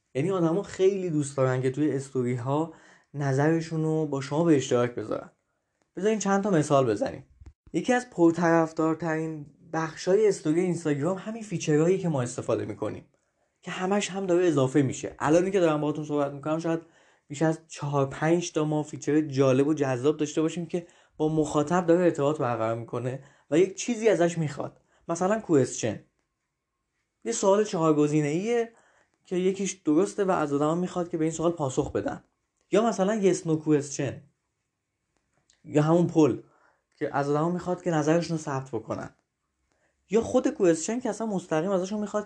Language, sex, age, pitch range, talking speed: Persian, male, 20-39, 140-180 Hz, 160 wpm